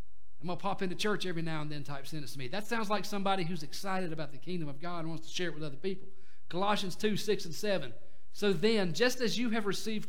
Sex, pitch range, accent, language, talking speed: male, 135-195 Hz, American, English, 270 wpm